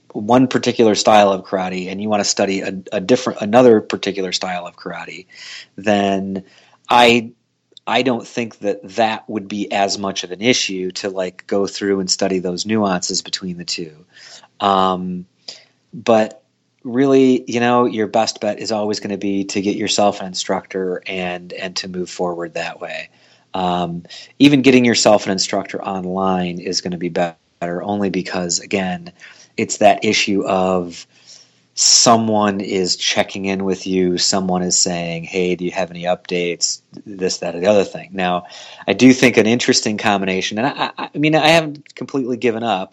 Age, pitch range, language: 30-49, 90-110 Hz, English